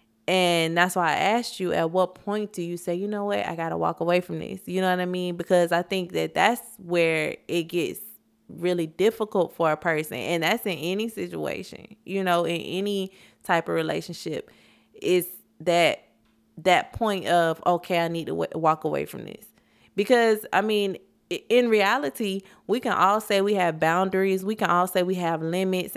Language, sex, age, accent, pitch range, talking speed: English, female, 20-39, American, 165-195 Hz, 195 wpm